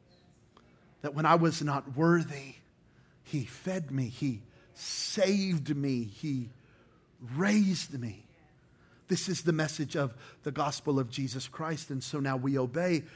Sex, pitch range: male, 130-165 Hz